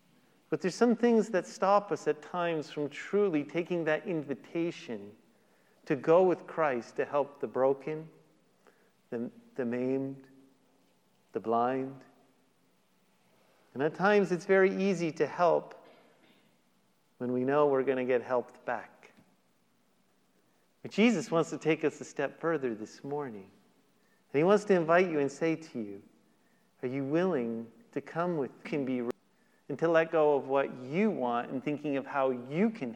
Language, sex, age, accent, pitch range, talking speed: English, male, 50-69, American, 135-205 Hz, 155 wpm